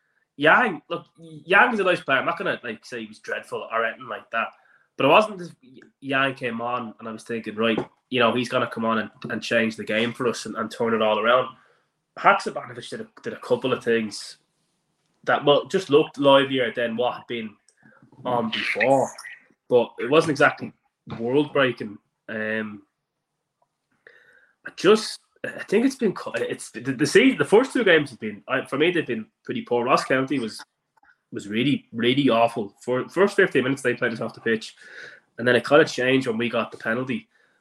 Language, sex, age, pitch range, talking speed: English, male, 20-39, 115-140 Hz, 200 wpm